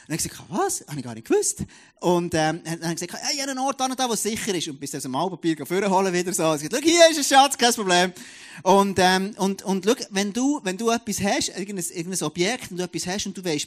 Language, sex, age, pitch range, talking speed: German, male, 30-49, 155-205 Hz, 275 wpm